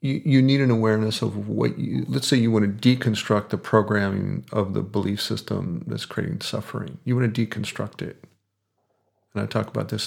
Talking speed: 190 wpm